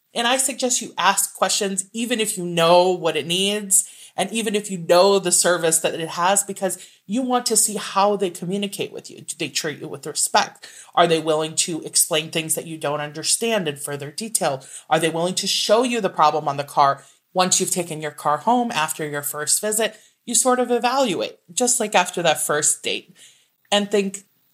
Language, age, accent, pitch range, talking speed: English, 30-49, American, 160-215 Hz, 210 wpm